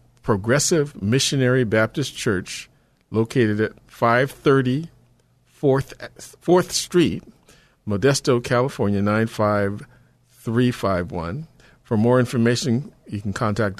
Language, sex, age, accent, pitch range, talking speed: English, male, 50-69, American, 100-125 Hz, 105 wpm